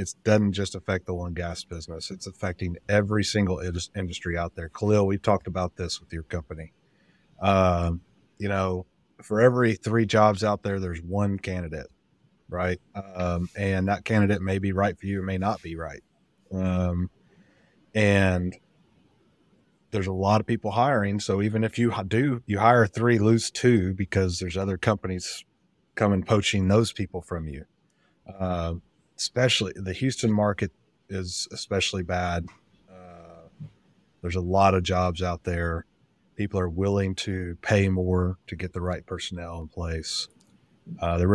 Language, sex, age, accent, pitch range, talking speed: English, male, 30-49, American, 90-105 Hz, 160 wpm